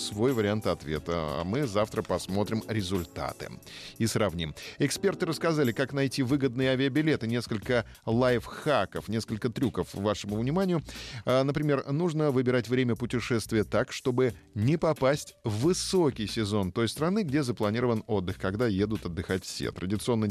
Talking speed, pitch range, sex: 125 wpm, 95-130 Hz, male